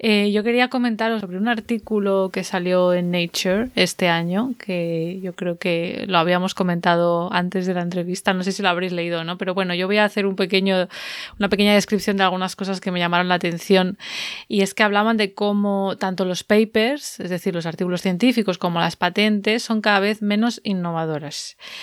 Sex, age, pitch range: female, 20-39, 185-215 Hz